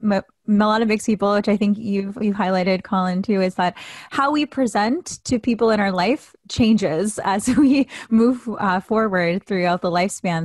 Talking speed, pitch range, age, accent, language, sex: 185 wpm, 185-230 Hz, 20-39, American, English, female